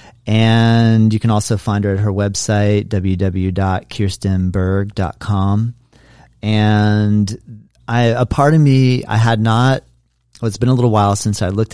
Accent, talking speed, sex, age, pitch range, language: American, 145 wpm, male, 40-59, 95-115 Hz, English